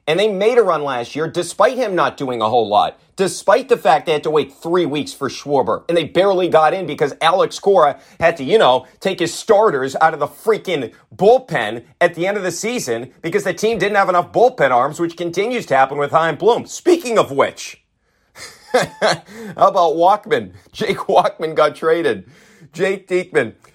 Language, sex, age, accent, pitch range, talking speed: English, male, 30-49, American, 120-180 Hz, 195 wpm